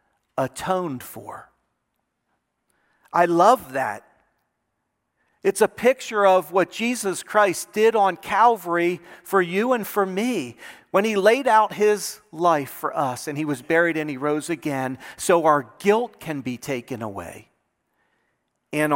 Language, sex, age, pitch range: English, male, 40-59, 140-205 Hz